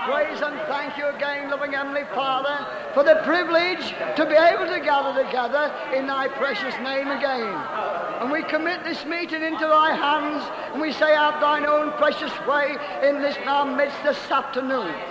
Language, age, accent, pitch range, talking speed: English, 50-69, British, 285-325 Hz, 180 wpm